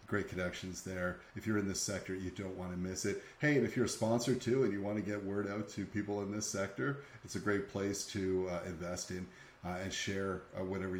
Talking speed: 250 wpm